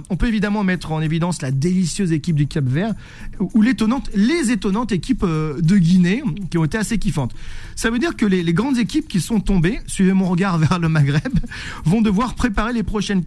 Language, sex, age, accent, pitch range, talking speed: French, male, 40-59, French, 160-215 Hz, 200 wpm